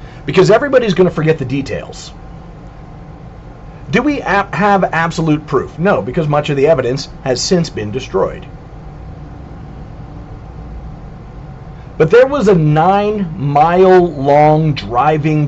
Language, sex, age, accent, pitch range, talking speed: English, male, 40-59, American, 145-175 Hz, 115 wpm